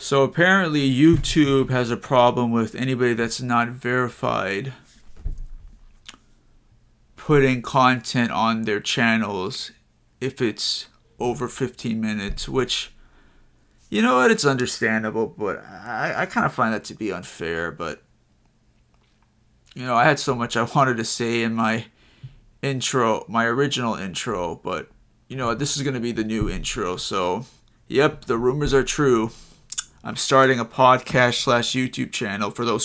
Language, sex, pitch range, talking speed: English, male, 115-135 Hz, 145 wpm